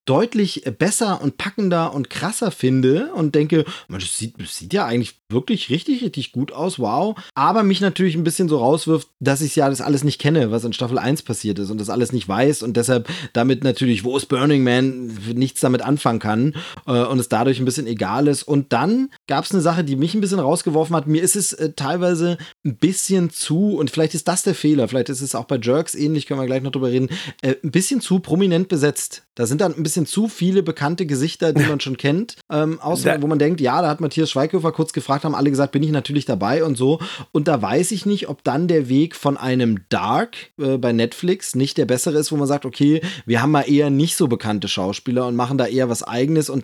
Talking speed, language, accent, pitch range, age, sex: 230 wpm, German, German, 130-160 Hz, 30-49, male